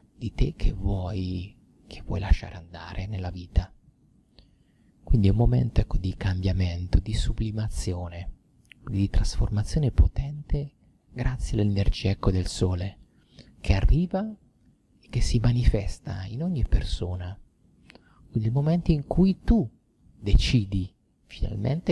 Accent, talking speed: native, 120 wpm